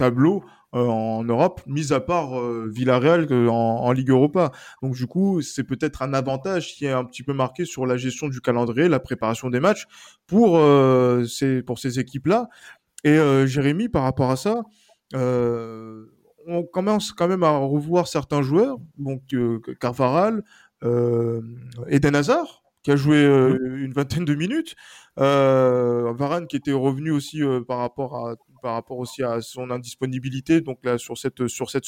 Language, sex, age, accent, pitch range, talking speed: French, male, 20-39, French, 125-165 Hz, 175 wpm